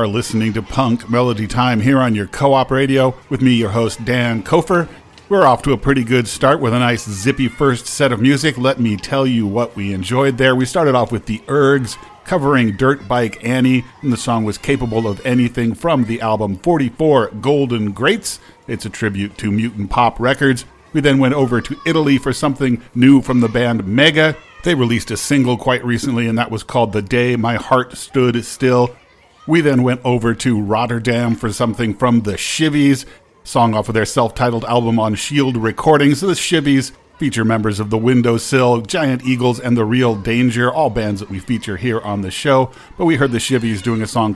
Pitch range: 115-135 Hz